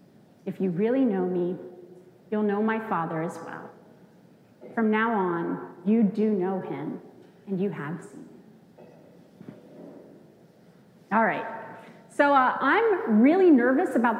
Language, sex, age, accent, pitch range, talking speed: English, female, 30-49, American, 200-275 Hz, 130 wpm